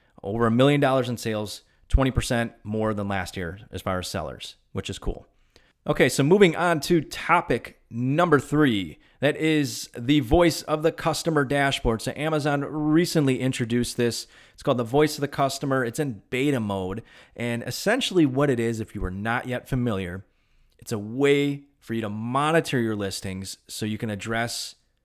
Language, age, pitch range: English, 30-49, 110-140 Hz